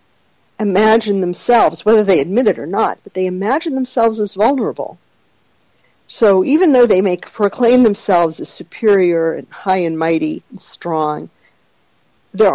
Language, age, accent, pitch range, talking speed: English, 50-69, American, 165-210 Hz, 145 wpm